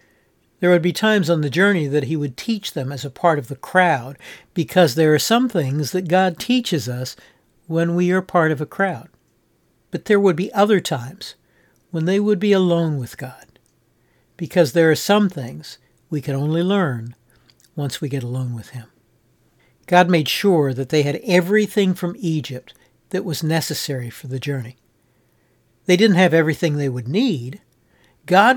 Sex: male